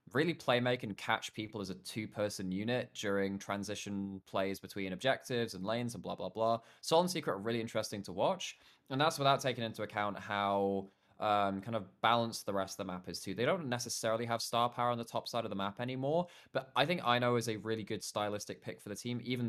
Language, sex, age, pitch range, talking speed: English, male, 20-39, 95-120 Hz, 230 wpm